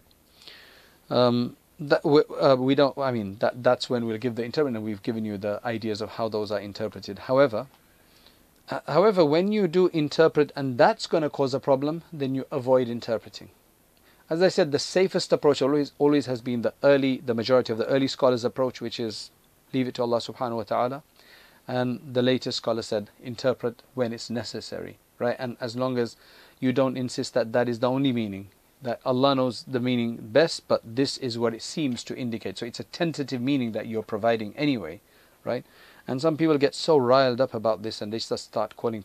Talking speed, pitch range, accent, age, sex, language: 205 wpm, 115-140 Hz, South African, 30-49, male, English